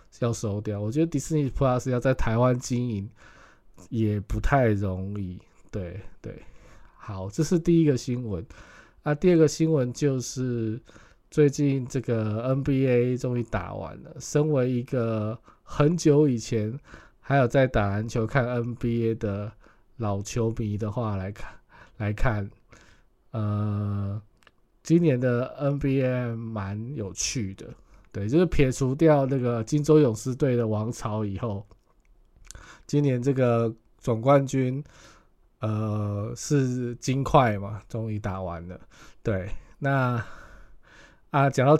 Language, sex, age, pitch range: Chinese, male, 20-39, 110-140 Hz